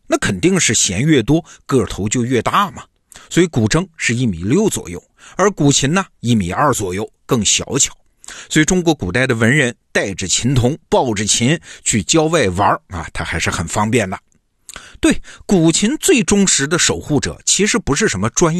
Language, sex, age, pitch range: Chinese, male, 50-69, 105-165 Hz